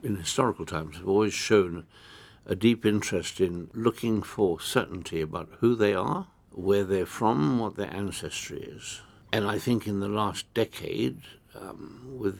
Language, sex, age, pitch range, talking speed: English, male, 60-79, 85-120 Hz, 160 wpm